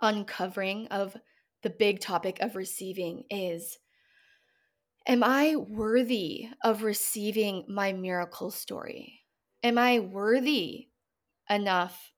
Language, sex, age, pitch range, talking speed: English, female, 20-39, 190-250 Hz, 100 wpm